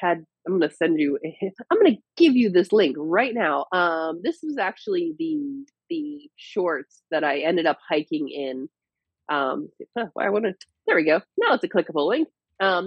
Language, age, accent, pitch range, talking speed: English, 30-49, American, 155-210 Hz, 195 wpm